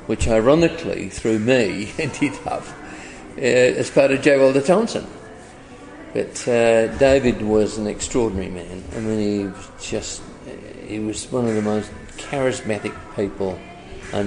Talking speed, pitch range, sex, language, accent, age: 145 wpm, 100-130 Hz, male, English, British, 50-69